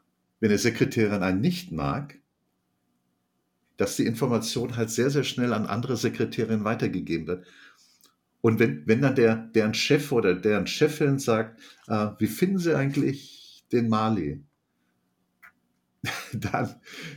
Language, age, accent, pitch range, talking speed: German, 50-69, German, 110-145 Hz, 130 wpm